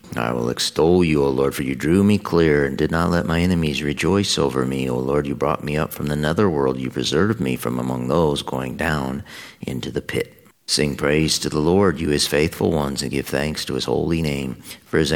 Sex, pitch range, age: male, 70-85 Hz, 50-69